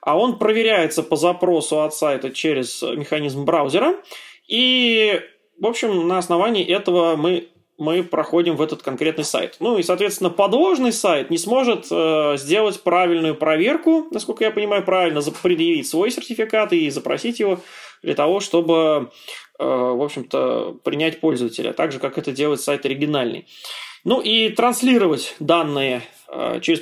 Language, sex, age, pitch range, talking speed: Russian, male, 20-39, 155-225 Hz, 145 wpm